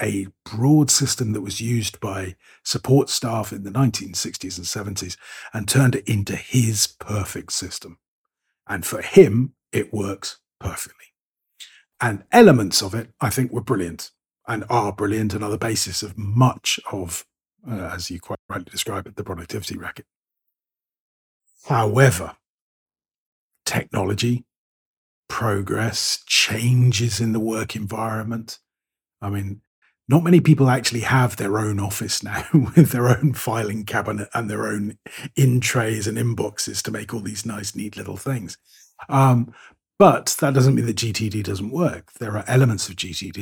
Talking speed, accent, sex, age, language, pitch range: 150 wpm, British, male, 40-59, English, 100-125 Hz